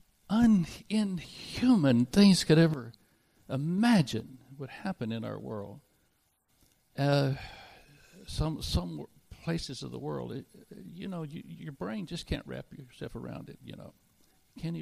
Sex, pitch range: male, 105-140 Hz